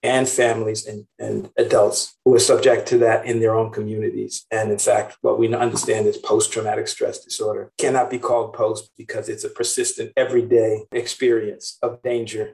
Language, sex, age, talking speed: English, male, 50-69, 170 wpm